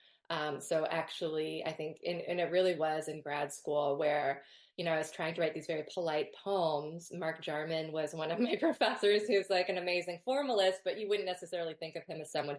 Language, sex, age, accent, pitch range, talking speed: English, female, 20-39, American, 160-200 Hz, 220 wpm